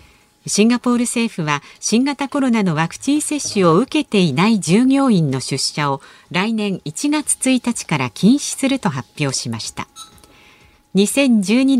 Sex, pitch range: female, 160-245 Hz